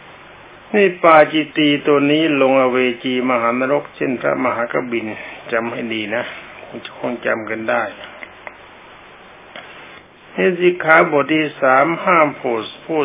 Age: 60-79